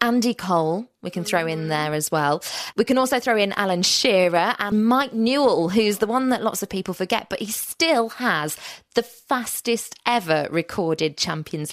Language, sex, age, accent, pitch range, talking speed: English, female, 20-39, British, 165-230 Hz, 185 wpm